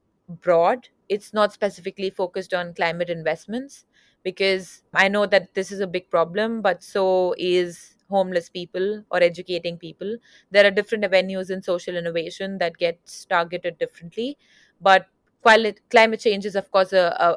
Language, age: English, 30-49